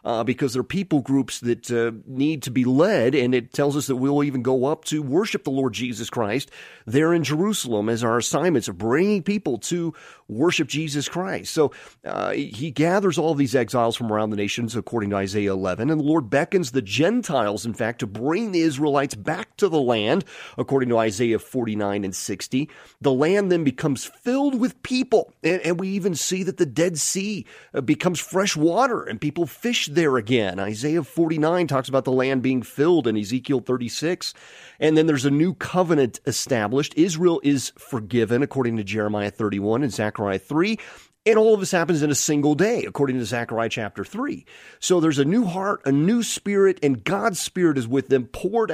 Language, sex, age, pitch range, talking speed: English, male, 30-49, 125-180 Hz, 195 wpm